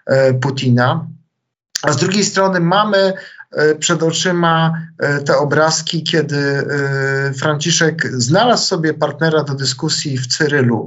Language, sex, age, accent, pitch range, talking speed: Polish, male, 50-69, native, 135-160 Hz, 105 wpm